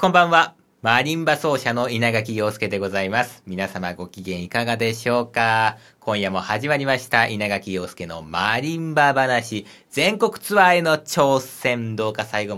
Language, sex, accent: Japanese, male, native